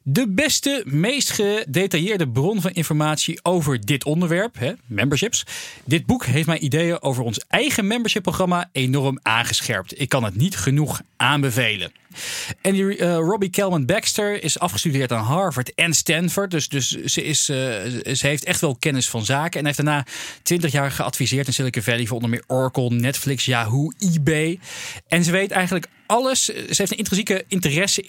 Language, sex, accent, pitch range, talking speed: Dutch, male, Dutch, 130-170 Hz, 160 wpm